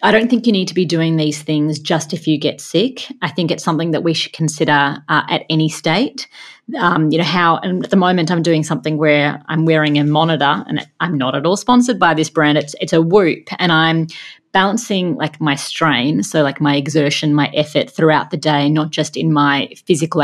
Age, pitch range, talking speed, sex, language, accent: 30-49, 155-180 Hz, 225 wpm, female, English, Australian